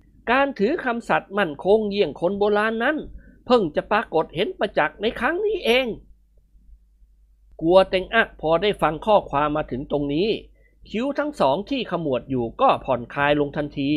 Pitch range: 160-240 Hz